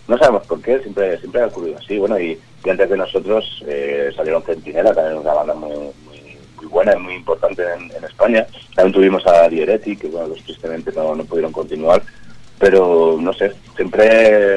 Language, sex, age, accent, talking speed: Spanish, male, 30-49, Spanish, 190 wpm